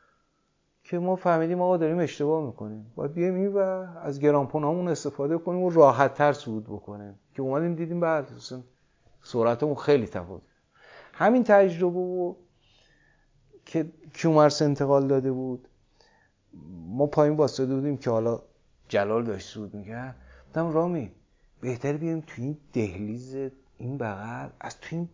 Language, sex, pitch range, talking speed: Persian, male, 115-165 Hz, 135 wpm